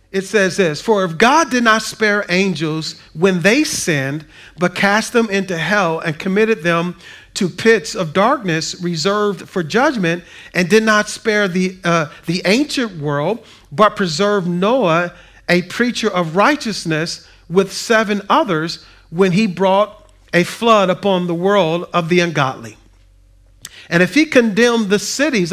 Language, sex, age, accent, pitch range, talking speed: English, male, 40-59, American, 165-210 Hz, 150 wpm